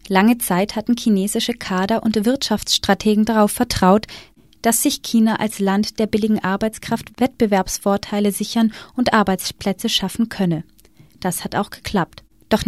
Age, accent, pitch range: 20-39, German, 195-245 Hz